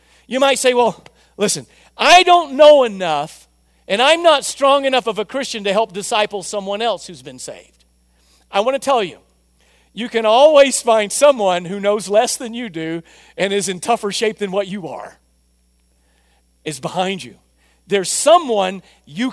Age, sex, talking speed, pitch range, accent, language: 50-69, male, 175 wpm, 170-260 Hz, American, English